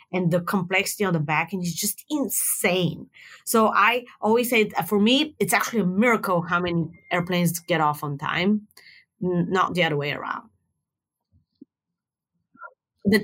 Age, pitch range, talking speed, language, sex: 30-49, 170-215 Hz, 155 wpm, English, female